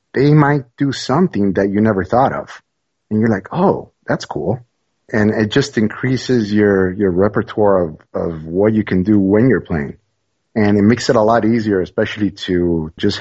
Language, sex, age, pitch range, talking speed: English, male, 30-49, 85-105 Hz, 185 wpm